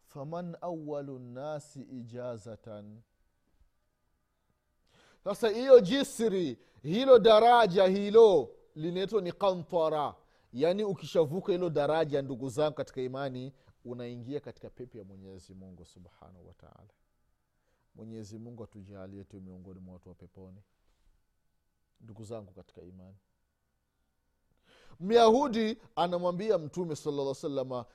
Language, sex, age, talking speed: Swahili, male, 30-49, 100 wpm